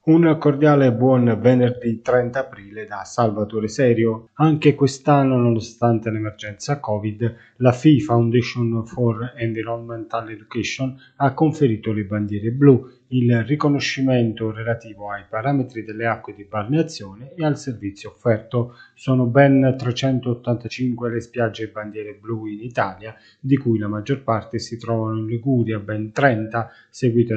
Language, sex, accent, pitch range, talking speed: Italian, male, native, 110-130 Hz, 135 wpm